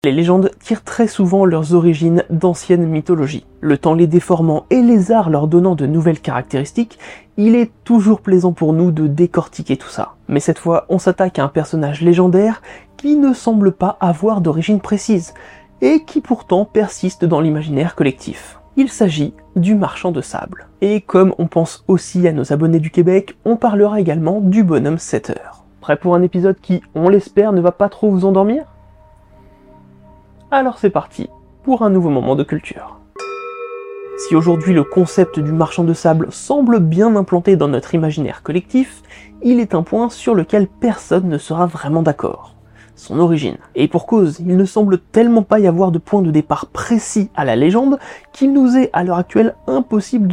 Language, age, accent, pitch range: French, 30-49, French, 165-215 Hz